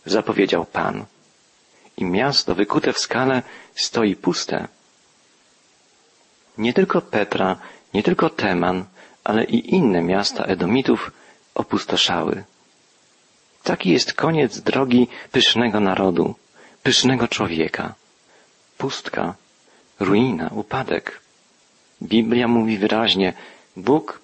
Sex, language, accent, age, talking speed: male, Polish, native, 40-59, 90 wpm